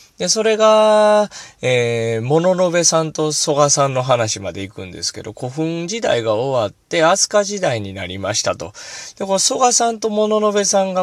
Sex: male